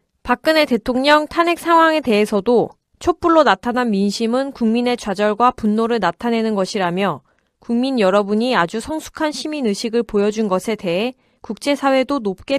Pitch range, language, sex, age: 205-265 Hz, Korean, female, 20-39